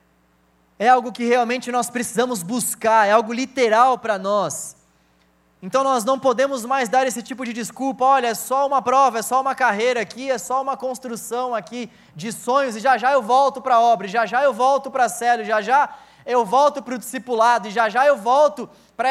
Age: 20-39